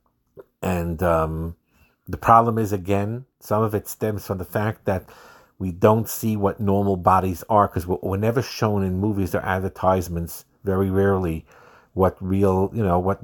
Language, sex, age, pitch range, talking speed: English, male, 50-69, 85-105 Hz, 170 wpm